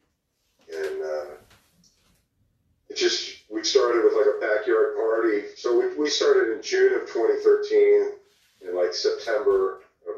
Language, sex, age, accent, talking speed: English, male, 40-59, American, 135 wpm